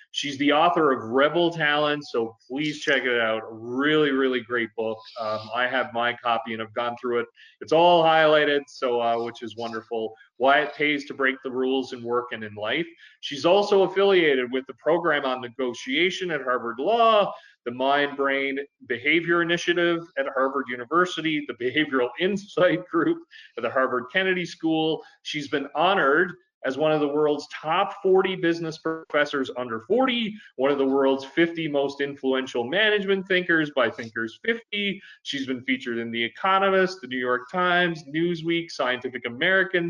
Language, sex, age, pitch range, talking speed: English, male, 30-49, 125-170 Hz, 170 wpm